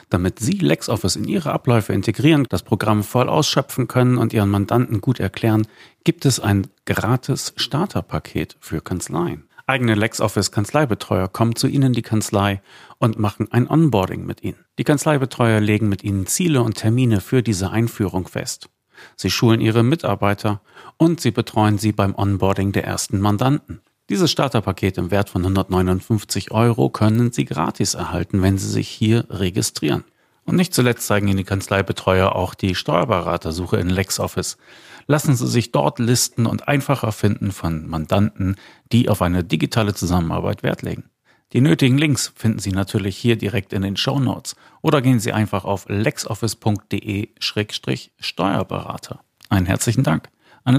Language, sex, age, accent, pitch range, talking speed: German, male, 40-59, German, 100-120 Hz, 150 wpm